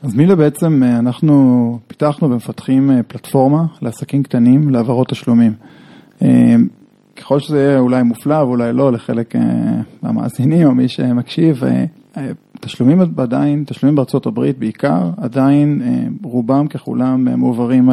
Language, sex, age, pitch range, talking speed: Hebrew, male, 20-39, 125-150 Hz, 105 wpm